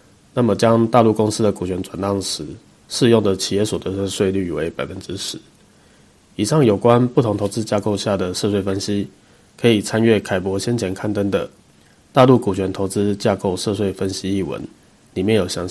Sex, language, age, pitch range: male, Chinese, 20-39, 95-115 Hz